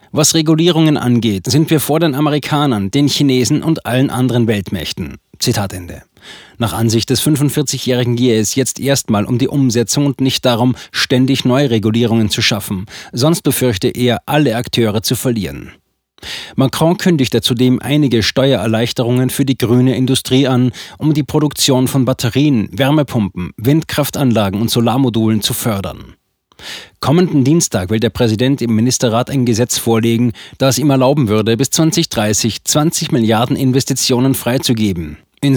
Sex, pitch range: male, 115-145 Hz